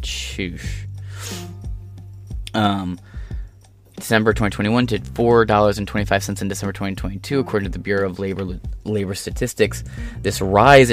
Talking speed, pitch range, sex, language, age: 100 wpm, 95-110 Hz, male, English, 20-39